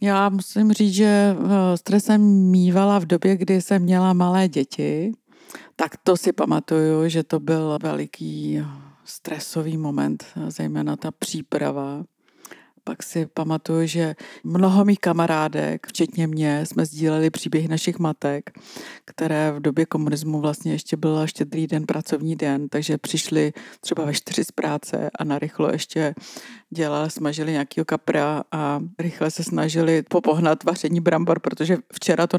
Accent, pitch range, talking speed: native, 150-175 Hz, 140 wpm